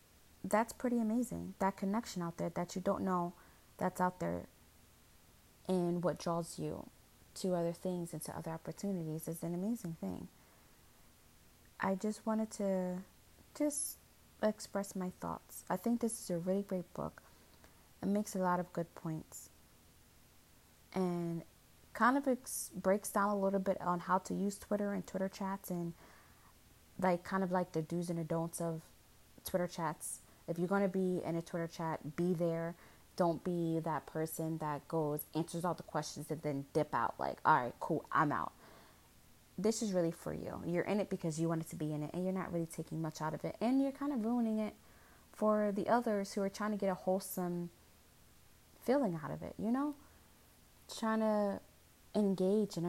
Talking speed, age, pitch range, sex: 185 wpm, 20-39, 165-200 Hz, female